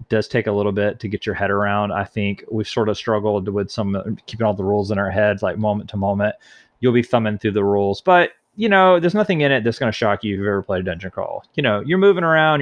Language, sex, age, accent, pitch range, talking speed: English, male, 30-49, American, 100-125 Hz, 280 wpm